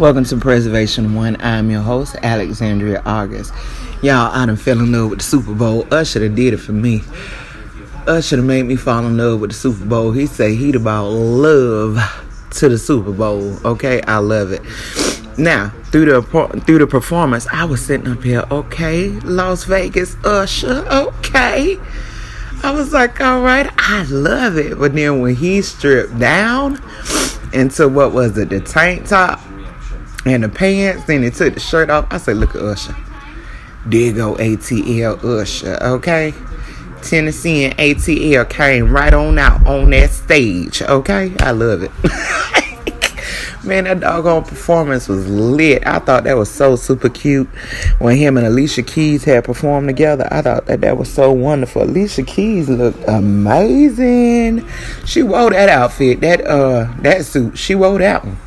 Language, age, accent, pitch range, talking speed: English, 30-49, American, 115-160 Hz, 165 wpm